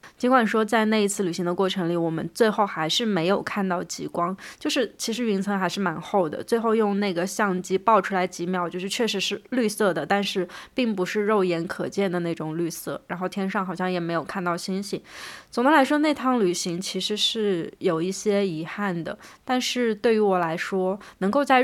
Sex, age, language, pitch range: female, 20-39, Chinese, 180-215 Hz